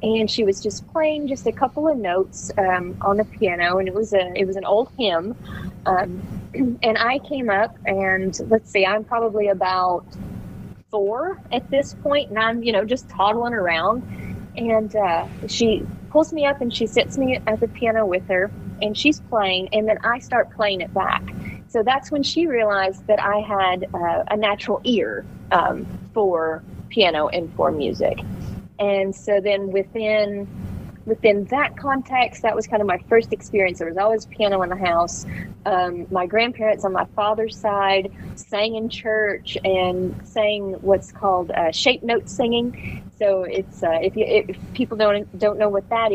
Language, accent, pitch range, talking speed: English, American, 195-230 Hz, 180 wpm